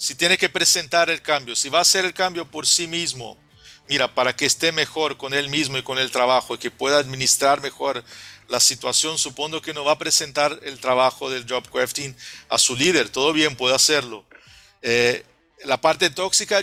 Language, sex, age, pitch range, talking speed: Spanish, male, 50-69, 130-160 Hz, 200 wpm